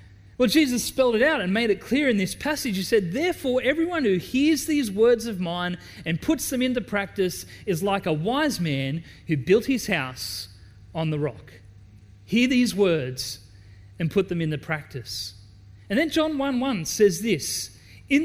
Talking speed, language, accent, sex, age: 185 wpm, English, Australian, male, 30-49